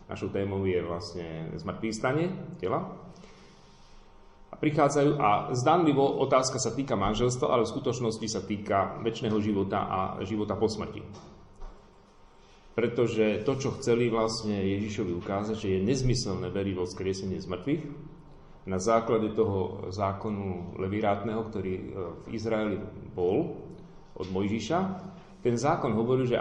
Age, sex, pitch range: 40-59, male, 95-120 Hz